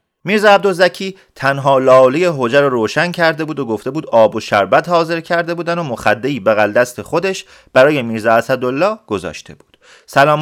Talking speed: 165 wpm